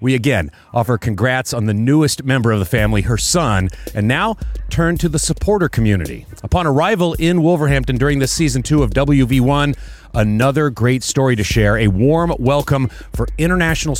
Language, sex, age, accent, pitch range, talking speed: English, male, 30-49, American, 110-155 Hz, 170 wpm